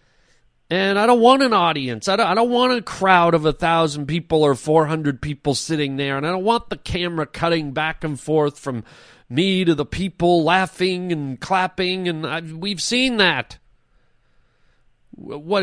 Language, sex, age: English, male, 40-59